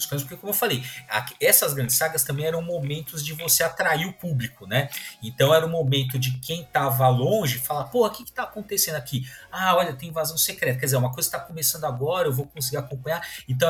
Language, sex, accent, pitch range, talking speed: Portuguese, male, Brazilian, 130-160 Hz, 220 wpm